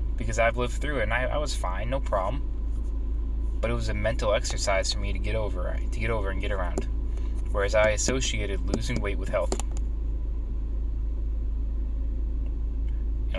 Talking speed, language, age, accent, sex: 165 wpm, English, 20-39, American, male